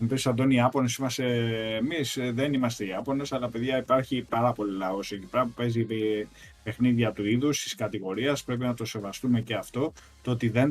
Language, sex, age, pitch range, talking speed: Greek, male, 20-39, 115-135 Hz, 175 wpm